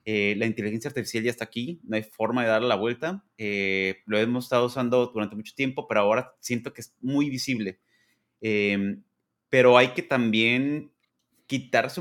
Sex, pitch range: male, 110-140 Hz